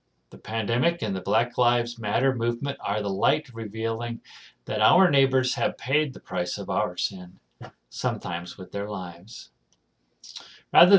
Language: English